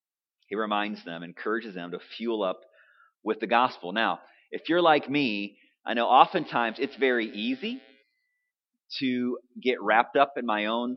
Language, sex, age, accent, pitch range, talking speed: English, male, 30-49, American, 110-150 Hz, 160 wpm